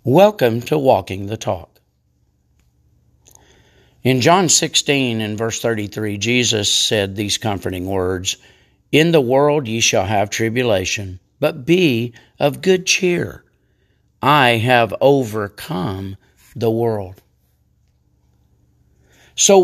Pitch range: 100-165 Hz